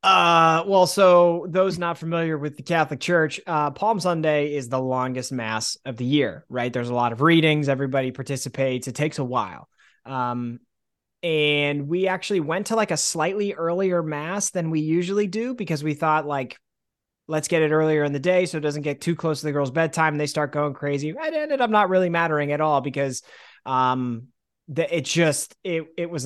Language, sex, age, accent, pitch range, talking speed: English, male, 20-39, American, 140-185 Hz, 205 wpm